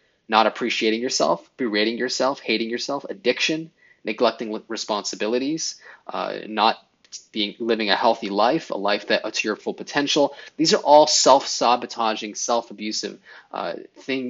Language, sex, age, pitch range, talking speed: English, male, 20-39, 105-125 Hz, 130 wpm